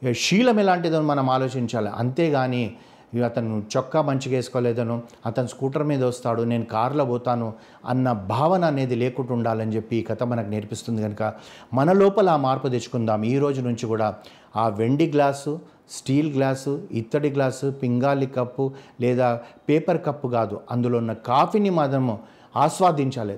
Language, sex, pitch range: Telugu, male, 120-150 Hz